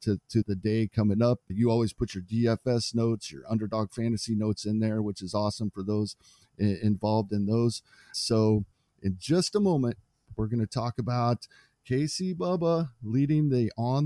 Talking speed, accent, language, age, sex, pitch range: 175 wpm, American, English, 40-59, male, 110-135 Hz